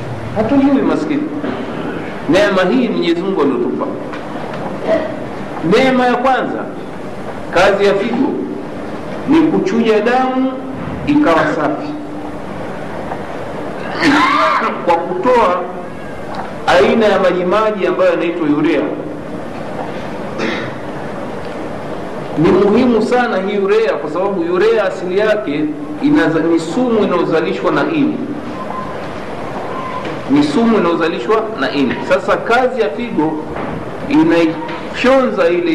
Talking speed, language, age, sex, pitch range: 85 wpm, Swahili, 50-69, male, 190-290 Hz